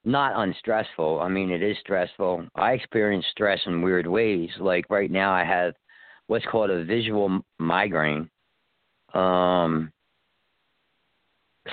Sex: male